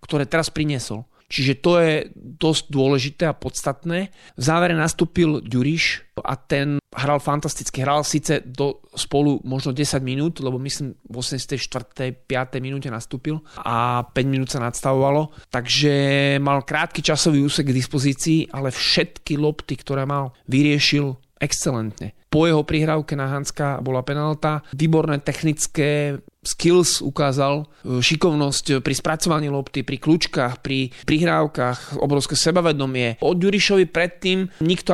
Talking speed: 130 wpm